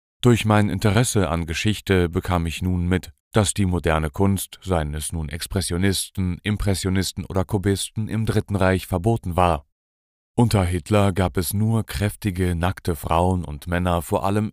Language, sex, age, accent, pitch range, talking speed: German, male, 40-59, German, 80-100 Hz, 155 wpm